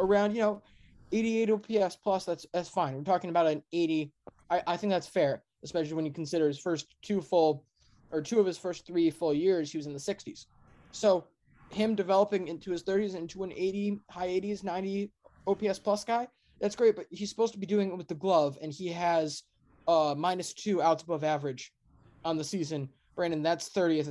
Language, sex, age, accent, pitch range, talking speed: English, male, 20-39, American, 160-205 Hz, 205 wpm